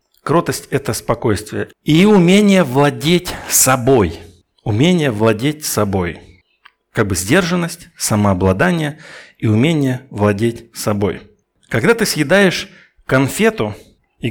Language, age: Russian, 60-79